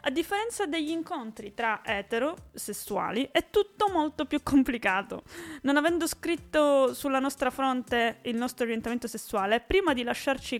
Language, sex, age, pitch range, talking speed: Italian, female, 20-39, 220-275 Hz, 140 wpm